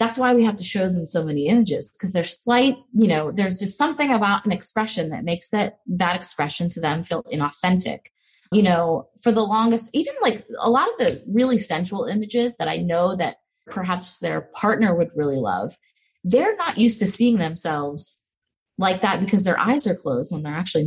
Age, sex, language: 30-49, female, English